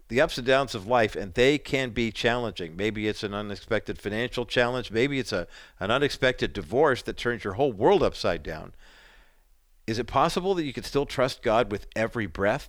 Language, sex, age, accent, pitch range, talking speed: English, male, 50-69, American, 105-130 Hz, 200 wpm